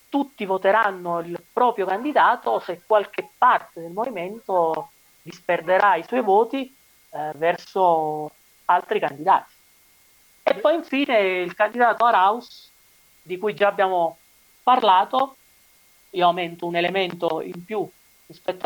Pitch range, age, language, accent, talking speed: 175-230 Hz, 40-59, Italian, native, 115 wpm